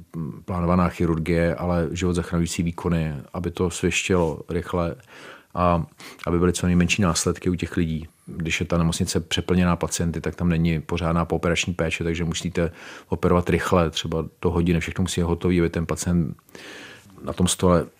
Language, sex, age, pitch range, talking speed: Czech, male, 40-59, 85-90 Hz, 160 wpm